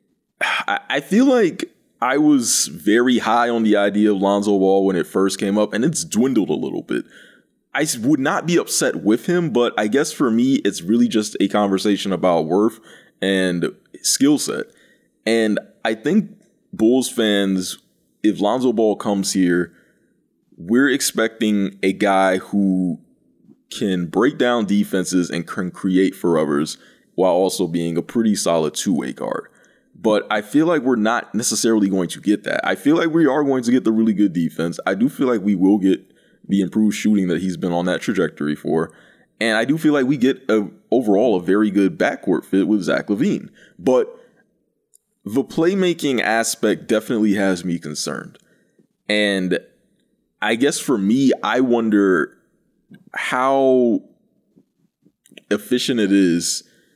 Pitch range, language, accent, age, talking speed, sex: 95-125 Hz, English, American, 20-39, 165 wpm, male